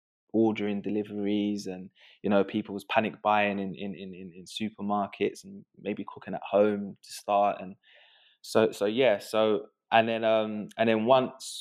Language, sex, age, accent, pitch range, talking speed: English, male, 20-39, British, 95-105 Hz, 170 wpm